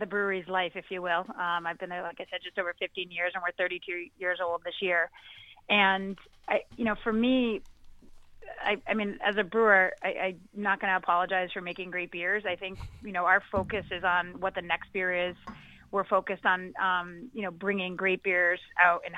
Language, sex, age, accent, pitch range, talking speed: English, female, 30-49, American, 180-200 Hz, 220 wpm